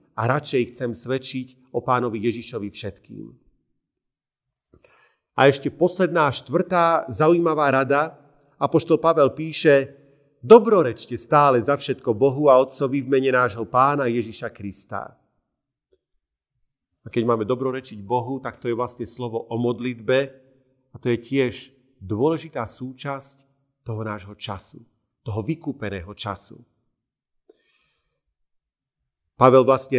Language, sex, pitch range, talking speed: Slovak, male, 120-155 Hz, 115 wpm